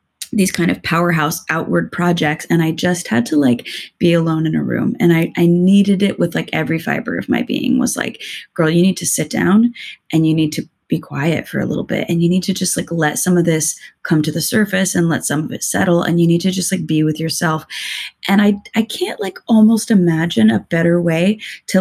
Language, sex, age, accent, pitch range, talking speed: English, female, 20-39, American, 165-205 Hz, 240 wpm